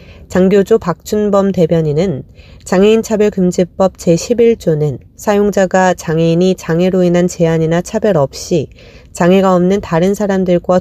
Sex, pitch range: female, 155-195 Hz